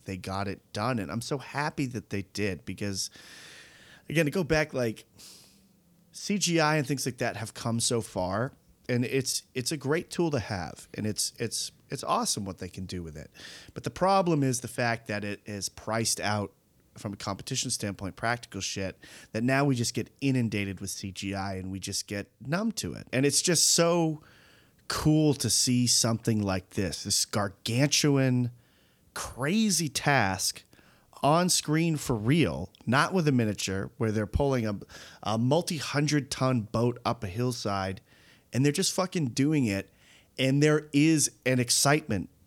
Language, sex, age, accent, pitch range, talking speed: English, male, 30-49, American, 105-145 Hz, 170 wpm